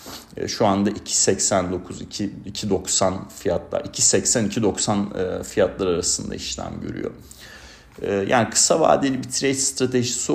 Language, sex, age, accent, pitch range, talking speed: Turkish, male, 40-59, native, 90-110 Hz, 85 wpm